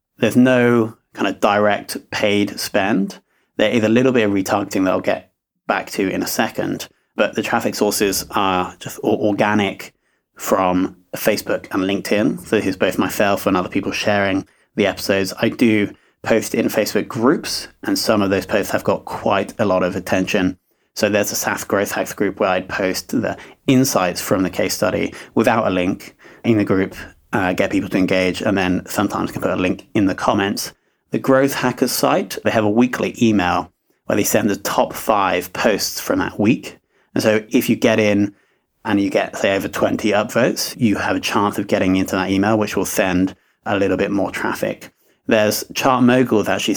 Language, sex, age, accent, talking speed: English, male, 30-49, British, 195 wpm